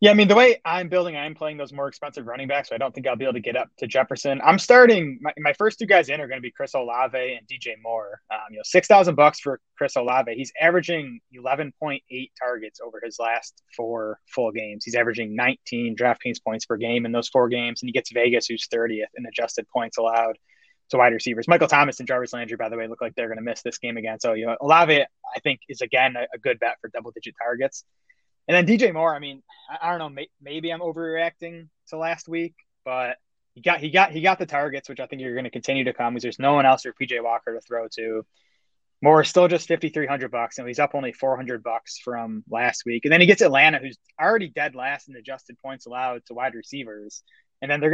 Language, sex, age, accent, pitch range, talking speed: English, male, 20-39, American, 115-155 Hz, 245 wpm